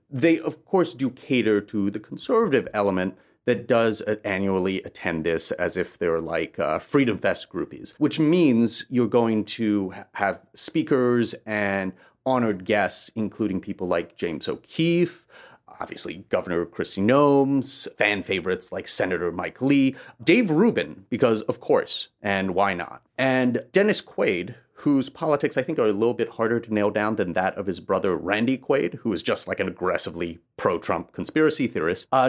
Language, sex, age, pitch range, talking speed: English, male, 30-49, 105-145 Hz, 160 wpm